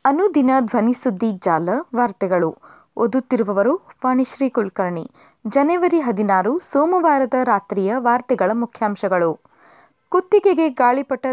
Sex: female